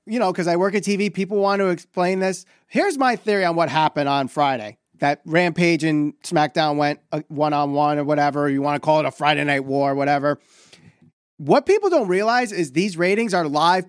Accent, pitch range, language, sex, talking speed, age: American, 175-250 Hz, English, male, 205 wpm, 30-49